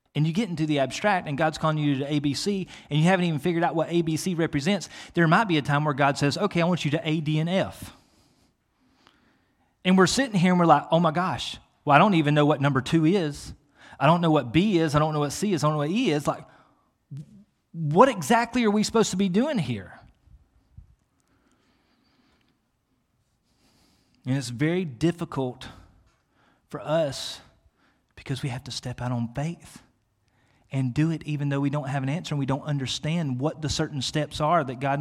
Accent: American